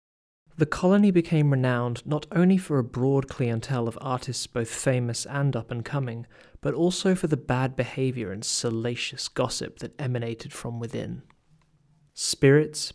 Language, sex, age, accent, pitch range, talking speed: English, male, 20-39, British, 120-150 Hz, 145 wpm